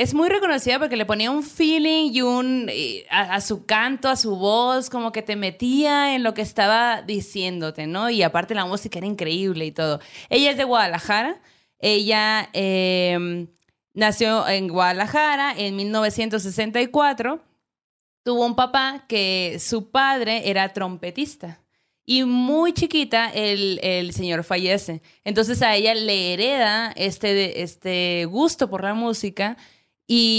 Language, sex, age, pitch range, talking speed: Spanish, female, 20-39, 180-235 Hz, 145 wpm